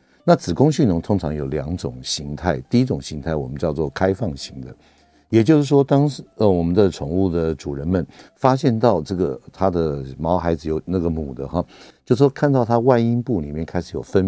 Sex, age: male, 60-79